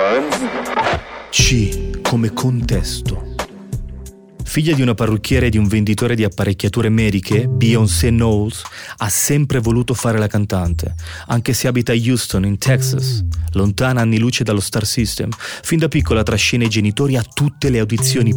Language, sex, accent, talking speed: Italian, male, native, 145 wpm